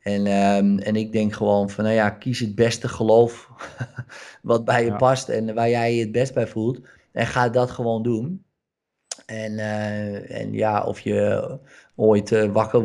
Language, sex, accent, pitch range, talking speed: Dutch, male, Dutch, 100-115 Hz, 175 wpm